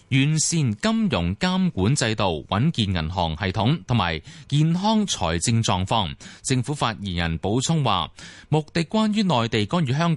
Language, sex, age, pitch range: Chinese, male, 30-49, 100-155 Hz